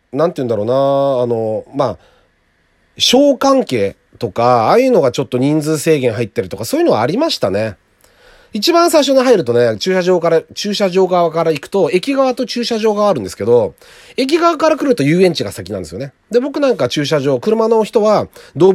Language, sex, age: Japanese, male, 40-59